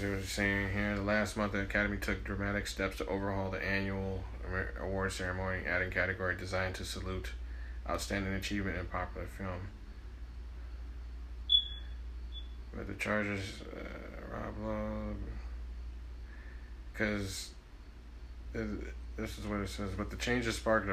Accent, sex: American, male